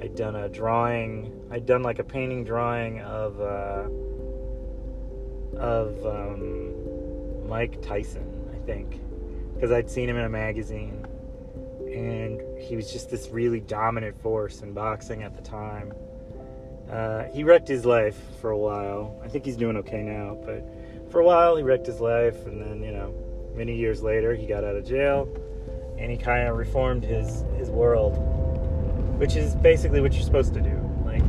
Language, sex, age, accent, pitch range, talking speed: English, male, 30-49, American, 80-120 Hz, 170 wpm